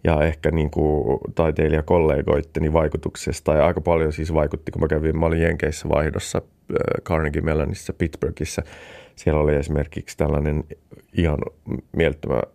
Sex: male